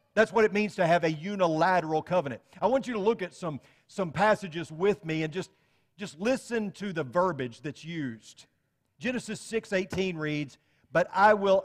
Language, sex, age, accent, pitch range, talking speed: English, male, 40-59, American, 140-185 Hz, 185 wpm